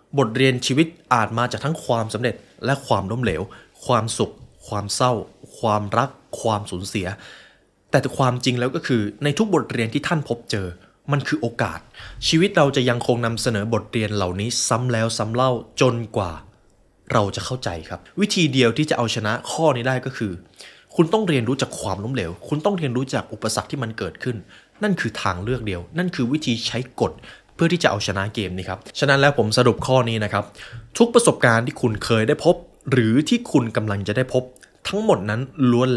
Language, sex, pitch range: Thai, male, 105-145 Hz